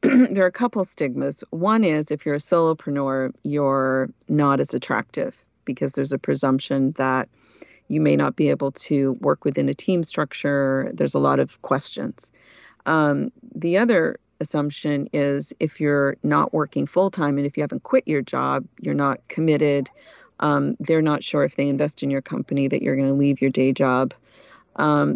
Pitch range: 135-160 Hz